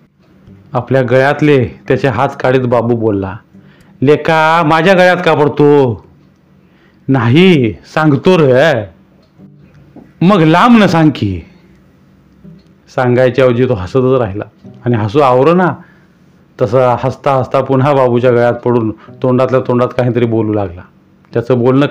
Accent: native